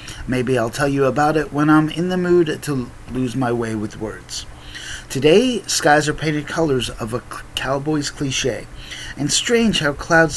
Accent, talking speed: American, 175 wpm